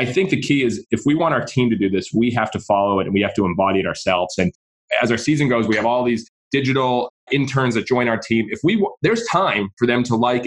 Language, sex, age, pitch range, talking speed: English, male, 20-39, 115-155 Hz, 275 wpm